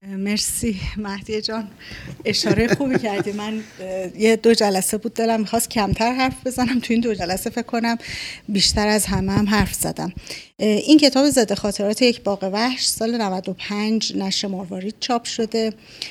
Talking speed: 155 wpm